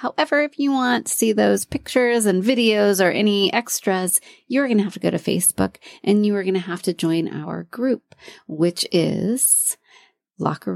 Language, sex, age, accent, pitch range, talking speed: English, female, 30-49, American, 170-245 Hz, 190 wpm